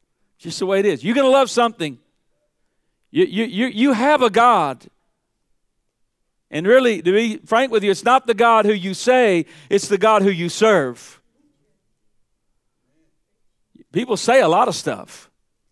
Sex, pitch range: male, 165-235 Hz